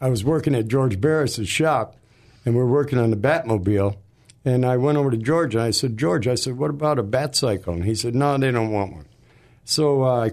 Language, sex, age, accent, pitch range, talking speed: English, male, 60-79, American, 110-135 Hz, 240 wpm